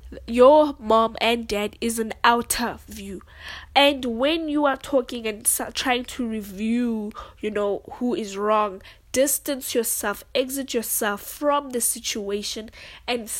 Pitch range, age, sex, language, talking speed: 210-255 Hz, 10-29, female, English, 135 wpm